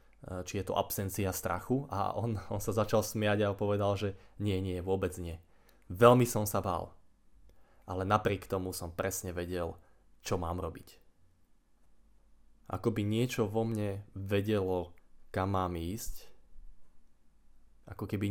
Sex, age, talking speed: male, 20-39, 140 wpm